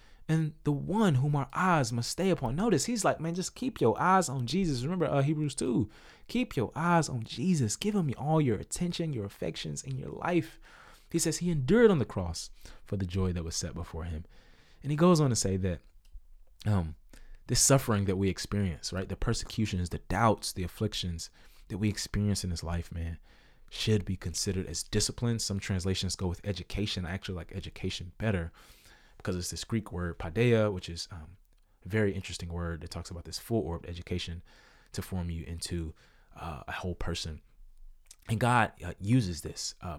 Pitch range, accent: 85-125 Hz, American